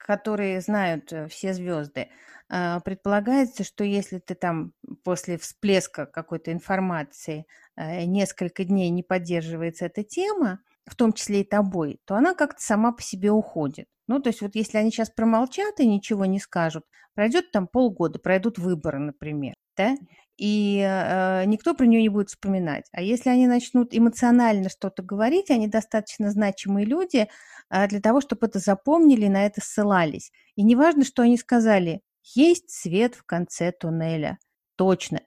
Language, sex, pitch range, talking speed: Russian, female, 180-240 Hz, 150 wpm